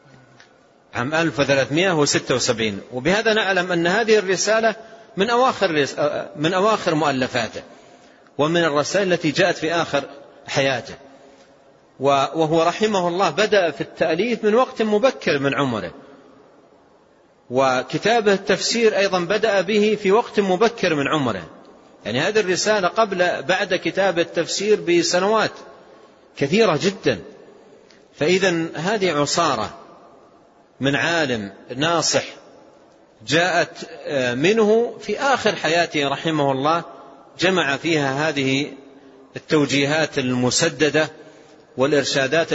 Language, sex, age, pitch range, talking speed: Arabic, male, 40-59, 140-190 Hz, 100 wpm